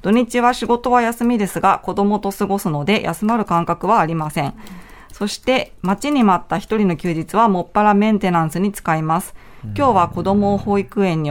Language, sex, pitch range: Japanese, female, 175-215 Hz